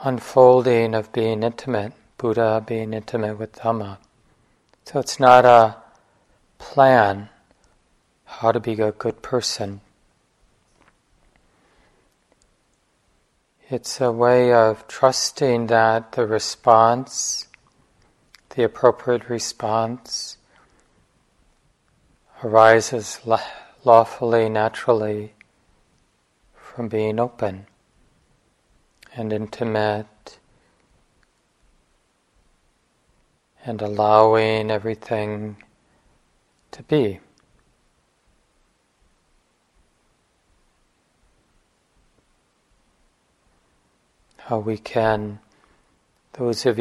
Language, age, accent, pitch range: English, 40-59, American, 110-120 Hz